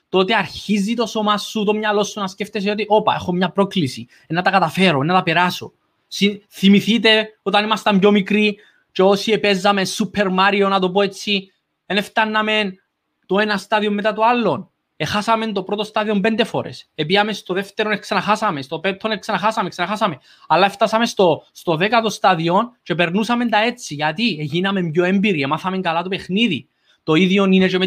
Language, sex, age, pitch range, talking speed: Greek, male, 20-39, 180-210 Hz, 170 wpm